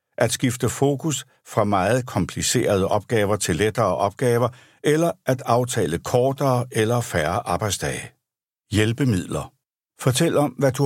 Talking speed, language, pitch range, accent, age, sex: 120 wpm, Danish, 100-135 Hz, native, 60-79, male